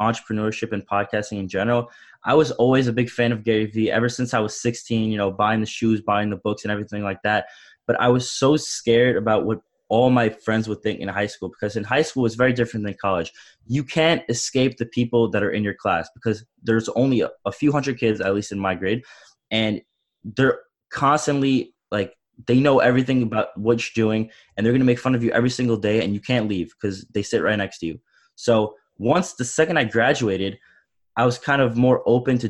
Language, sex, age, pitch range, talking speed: English, male, 20-39, 105-125 Hz, 225 wpm